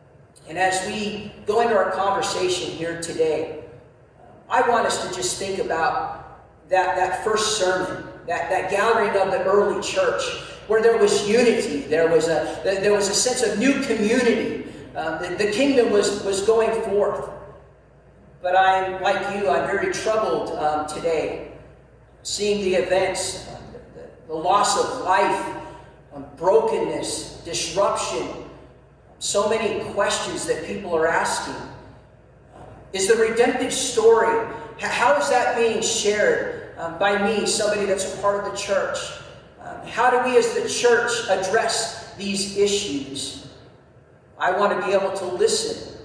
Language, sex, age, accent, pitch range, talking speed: English, male, 50-69, American, 185-225 Hz, 145 wpm